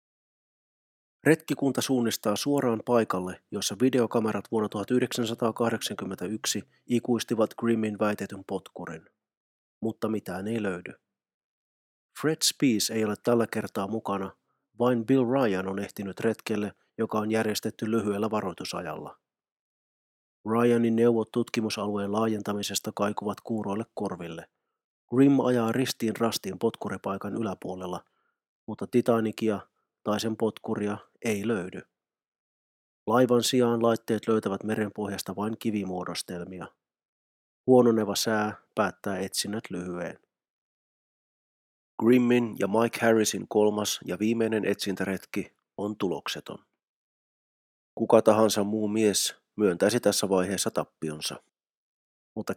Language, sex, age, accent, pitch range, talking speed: Finnish, male, 30-49, native, 100-115 Hz, 95 wpm